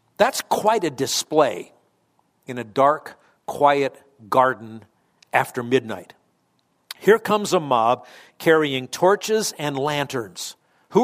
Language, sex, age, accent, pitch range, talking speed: English, male, 50-69, American, 130-190 Hz, 110 wpm